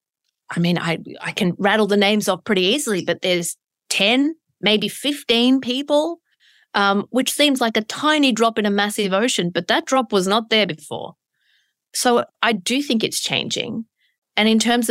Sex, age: female, 30-49